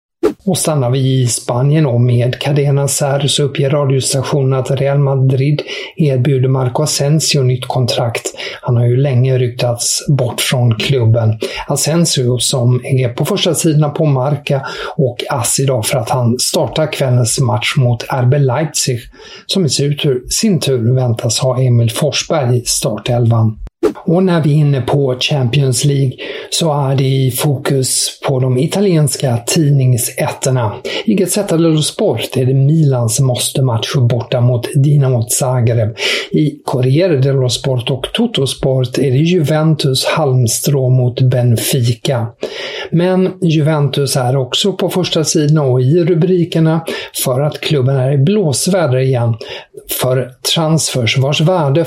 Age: 50-69